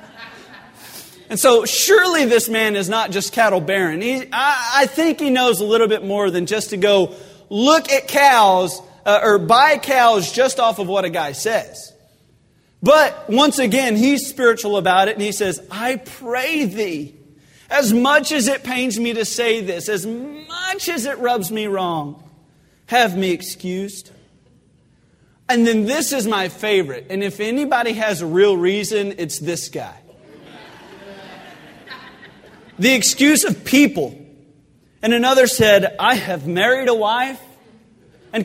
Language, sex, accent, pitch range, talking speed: English, male, American, 200-280 Hz, 155 wpm